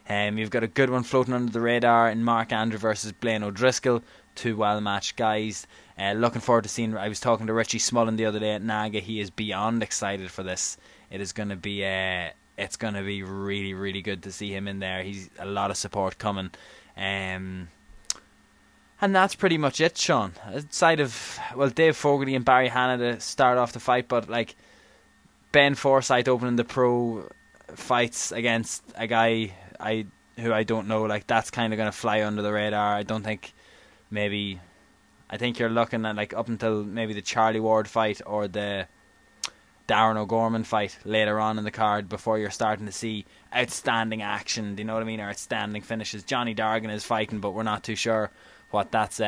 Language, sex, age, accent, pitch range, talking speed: English, male, 20-39, Irish, 100-115 Hz, 200 wpm